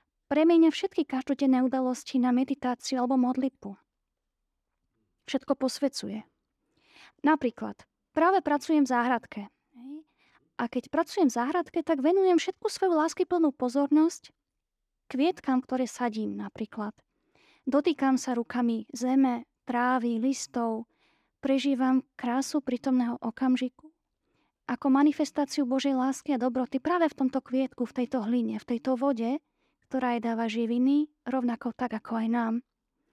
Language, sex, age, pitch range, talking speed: Slovak, female, 20-39, 240-280 Hz, 120 wpm